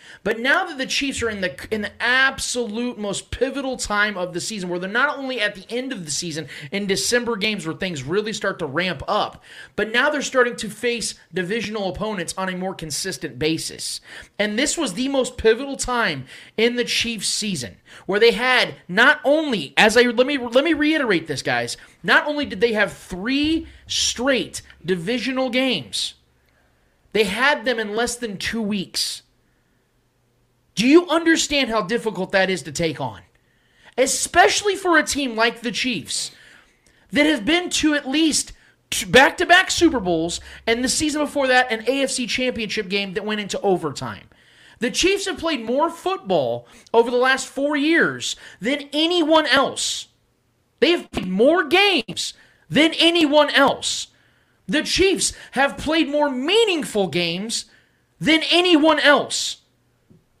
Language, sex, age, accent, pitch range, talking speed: English, male, 30-49, American, 190-285 Hz, 160 wpm